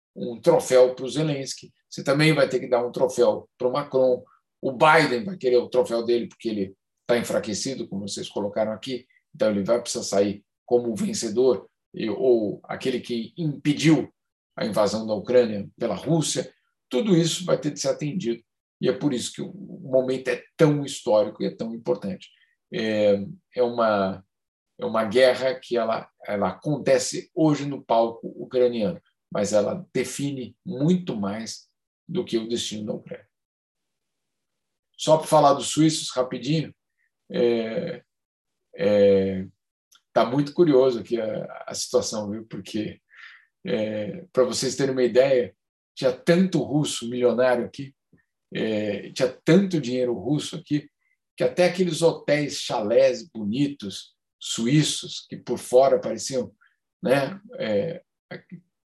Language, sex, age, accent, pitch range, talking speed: Portuguese, male, 50-69, Brazilian, 115-155 Hz, 145 wpm